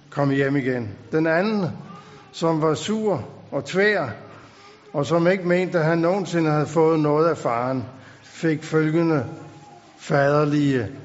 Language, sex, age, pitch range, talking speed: Danish, male, 60-79, 130-165 Hz, 135 wpm